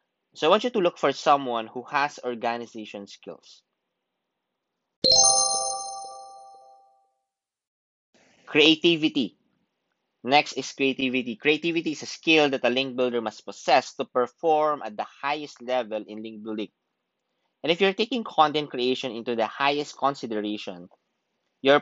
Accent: Filipino